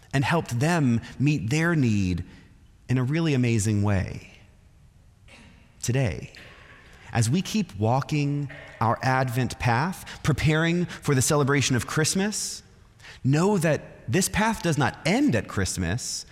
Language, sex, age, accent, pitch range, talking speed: English, male, 30-49, American, 110-150 Hz, 125 wpm